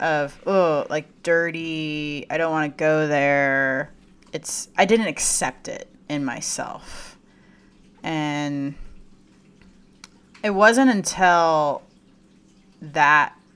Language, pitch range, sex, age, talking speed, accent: English, 145-180 Hz, female, 30-49, 95 wpm, American